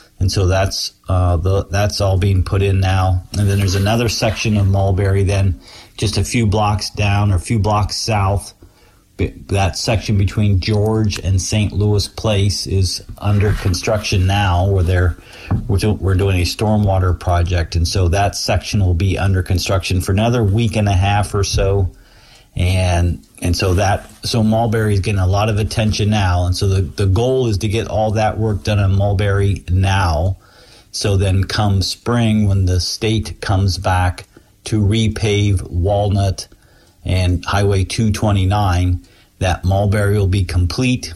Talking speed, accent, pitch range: 165 wpm, American, 90-105 Hz